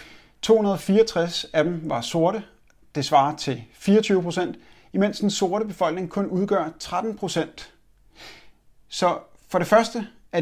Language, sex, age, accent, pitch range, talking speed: Danish, male, 30-49, native, 150-195 Hz, 120 wpm